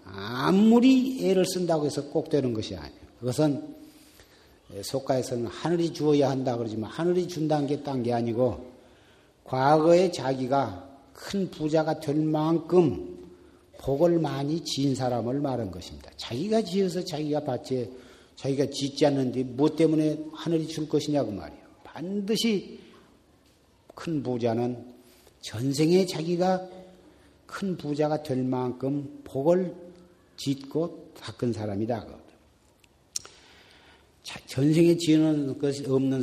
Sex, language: male, Korean